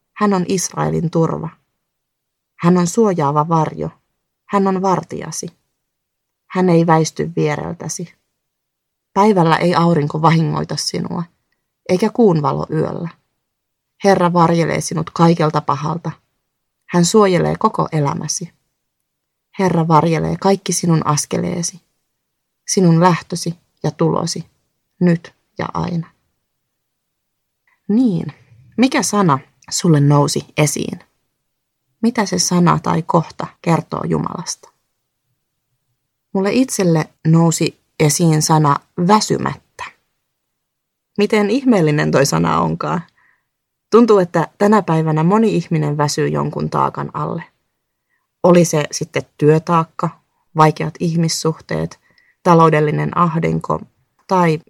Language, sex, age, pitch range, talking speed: Finnish, female, 30-49, 150-180 Hz, 95 wpm